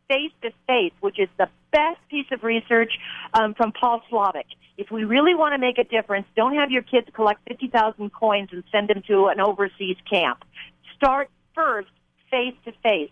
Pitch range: 200-255 Hz